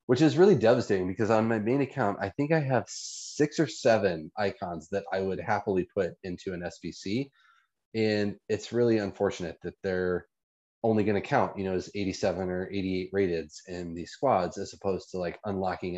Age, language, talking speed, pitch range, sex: 30-49, English, 190 wpm, 90-110 Hz, male